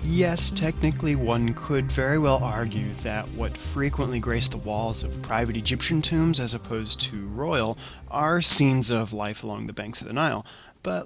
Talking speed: 175 wpm